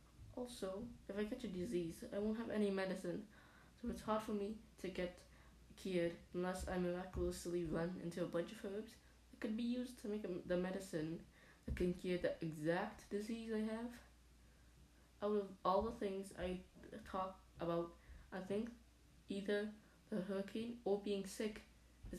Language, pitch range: Japanese, 175-210 Hz